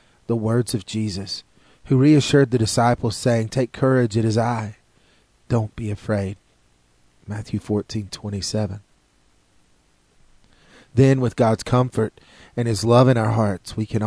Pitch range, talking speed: 100-125 Hz, 140 wpm